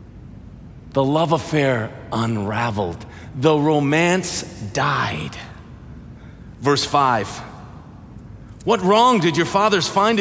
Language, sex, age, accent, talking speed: English, male, 40-59, American, 90 wpm